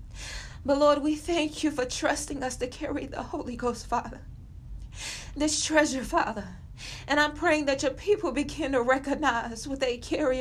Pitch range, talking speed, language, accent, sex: 260-355 Hz, 165 wpm, English, American, female